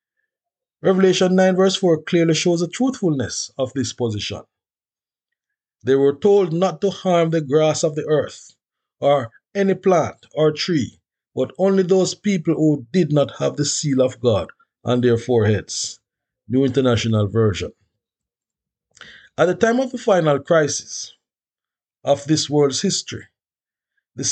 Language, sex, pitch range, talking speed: English, male, 130-185 Hz, 140 wpm